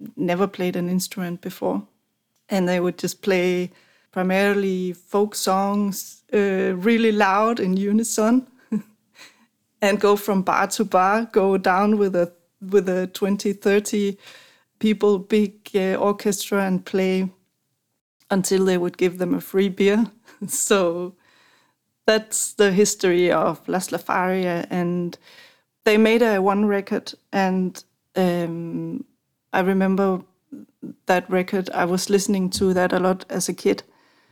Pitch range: 185-210 Hz